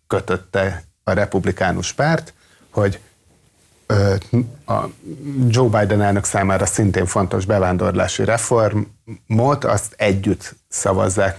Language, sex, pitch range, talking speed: Hungarian, male, 95-115 Hz, 95 wpm